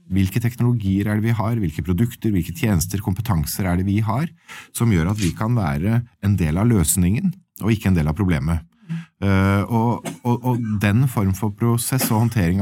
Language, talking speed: English, 200 wpm